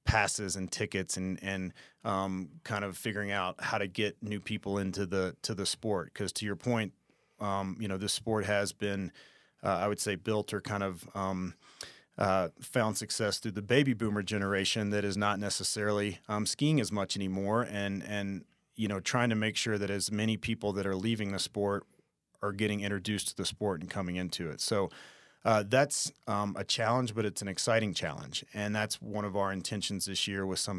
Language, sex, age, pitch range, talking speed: English, male, 30-49, 95-110 Hz, 205 wpm